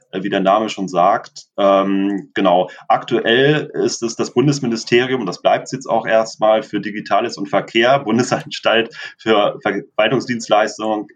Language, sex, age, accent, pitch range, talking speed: German, male, 30-49, German, 95-110 Hz, 140 wpm